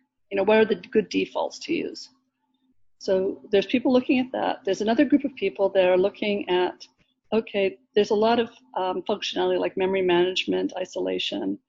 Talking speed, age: 180 wpm, 40-59